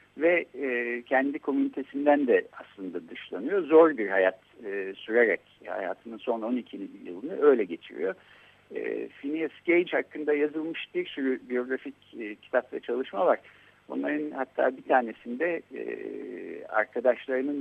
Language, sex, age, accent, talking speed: Turkish, male, 60-79, native, 125 wpm